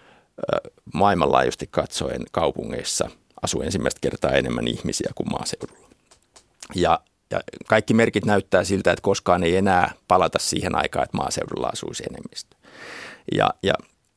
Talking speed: 125 wpm